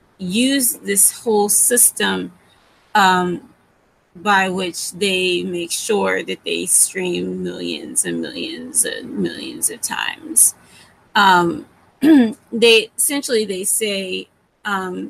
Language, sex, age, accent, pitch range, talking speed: English, female, 20-39, American, 195-245 Hz, 105 wpm